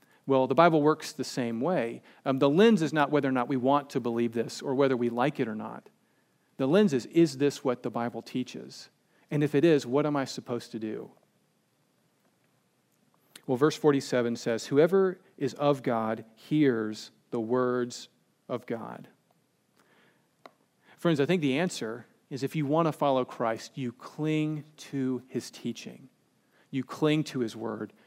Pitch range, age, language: 125-150 Hz, 40-59, English